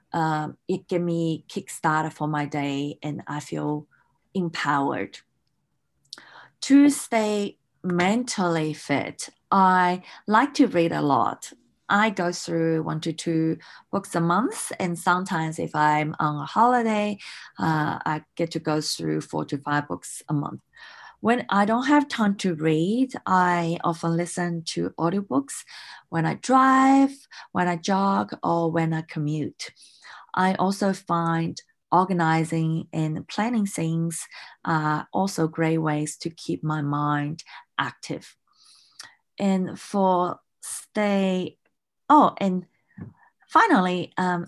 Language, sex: English, female